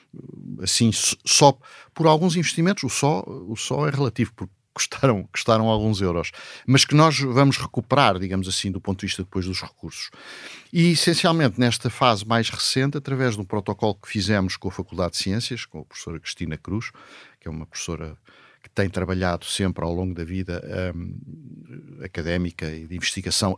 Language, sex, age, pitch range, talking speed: Portuguese, male, 50-69, 100-145 Hz, 175 wpm